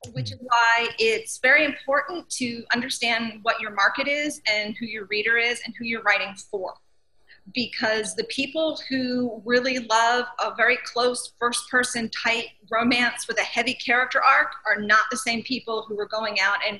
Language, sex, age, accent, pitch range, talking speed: English, female, 30-49, American, 220-275 Hz, 175 wpm